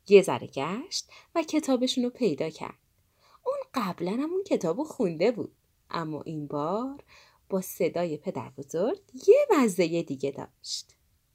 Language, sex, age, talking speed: Persian, female, 30-49, 130 wpm